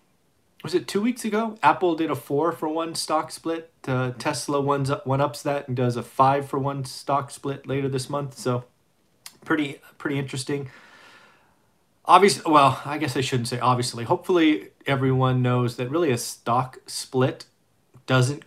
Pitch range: 125-145 Hz